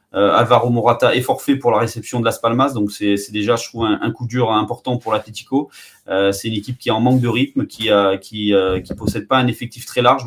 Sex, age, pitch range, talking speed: male, 20-39, 110-125 Hz, 265 wpm